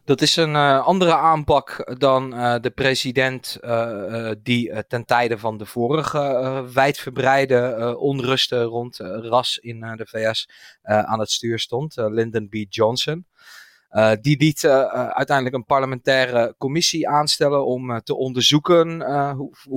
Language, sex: Dutch, male